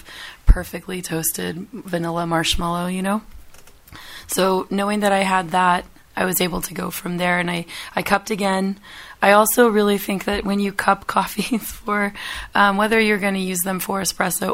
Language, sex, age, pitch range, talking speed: English, female, 20-39, 185-205 Hz, 175 wpm